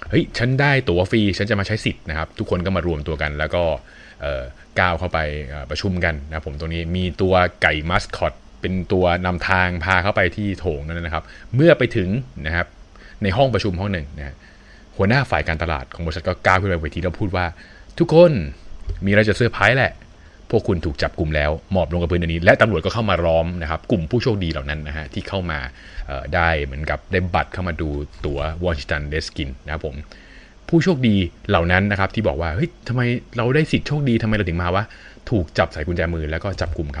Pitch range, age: 80-100 Hz, 20-39